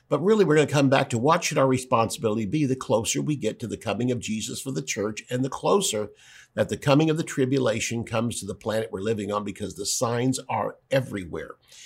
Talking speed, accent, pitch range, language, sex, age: 235 wpm, American, 105-135 Hz, English, male, 50-69